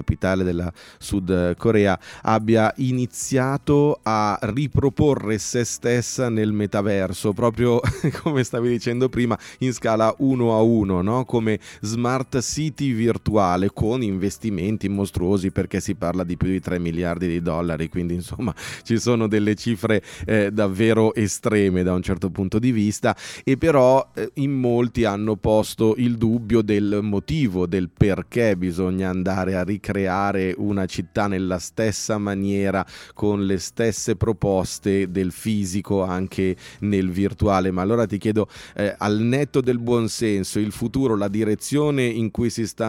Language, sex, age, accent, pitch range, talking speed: Italian, male, 30-49, native, 100-120 Hz, 145 wpm